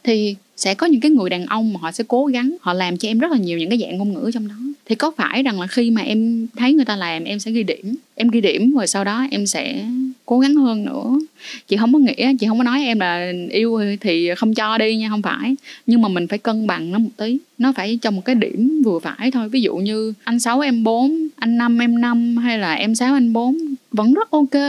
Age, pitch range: 10-29, 210-260 Hz